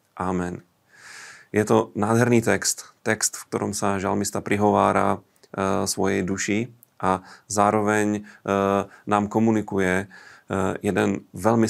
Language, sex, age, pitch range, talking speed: Slovak, male, 30-49, 95-110 Hz, 115 wpm